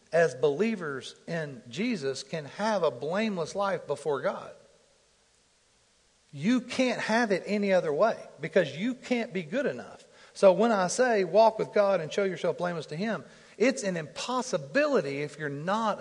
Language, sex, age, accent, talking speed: English, male, 50-69, American, 160 wpm